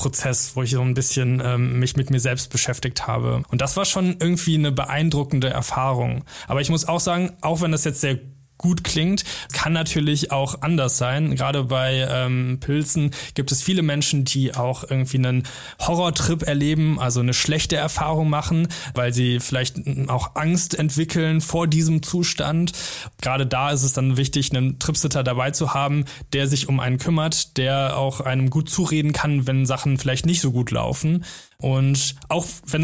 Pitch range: 130-160 Hz